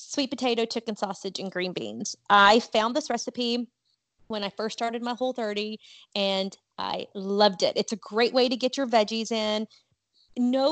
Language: English